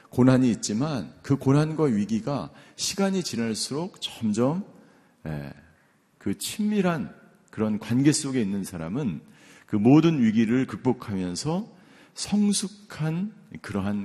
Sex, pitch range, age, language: male, 105-150 Hz, 50-69, Korean